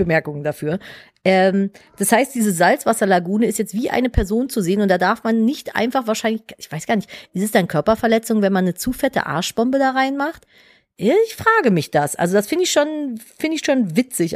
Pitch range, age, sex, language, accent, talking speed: 185-255 Hz, 40-59, female, German, German, 205 wpm